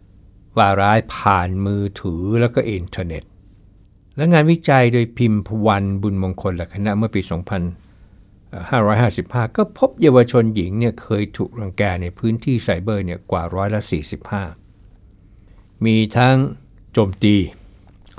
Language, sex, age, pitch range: Thai, male, 60-79, 95-120 Hz